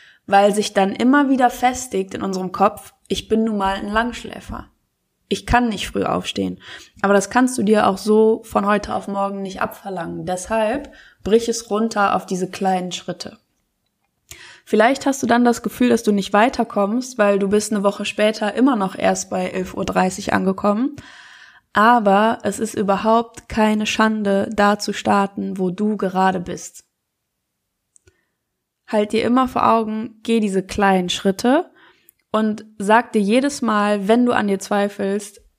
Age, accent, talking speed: 20-39, German, 160 wpm